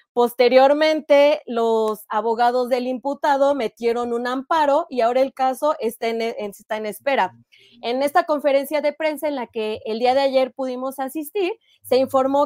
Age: 20-39